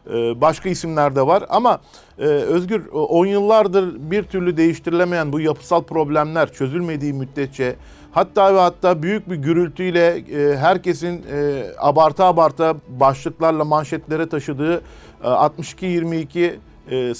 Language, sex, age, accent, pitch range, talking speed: Turkish, male, 50-69, native, 145-175 Hz, 100 wpm